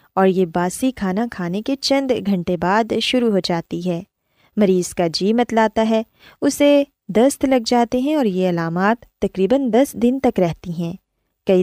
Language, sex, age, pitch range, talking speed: Urdu, female, 20-39, 185-260 Hz, 175 wpm